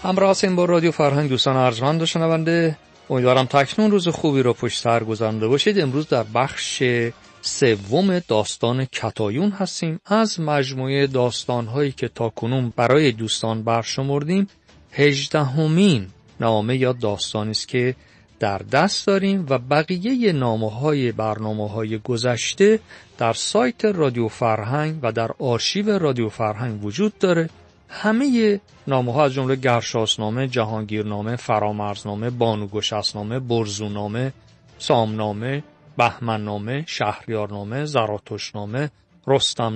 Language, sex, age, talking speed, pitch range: Persian, male, 40-59, 120 wpm, 110-155 Hz